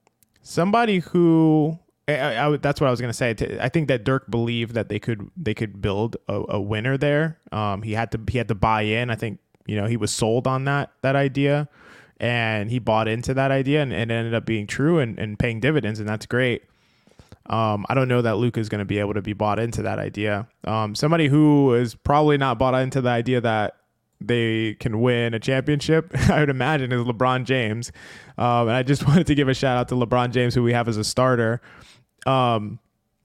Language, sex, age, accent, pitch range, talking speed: English, male, 20-39, American, 115-145 Hz, 215 wpm